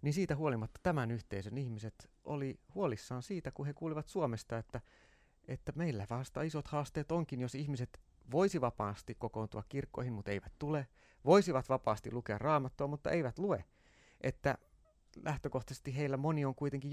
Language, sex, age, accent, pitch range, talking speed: Finnish, male, 30-49, native, 110-145 Hz, 150 wpm